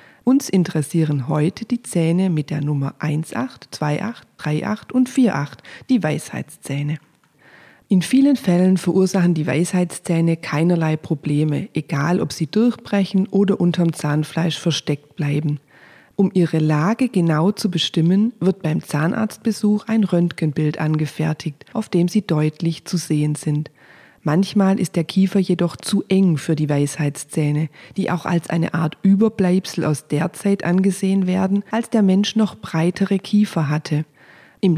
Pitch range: 155-200 Hz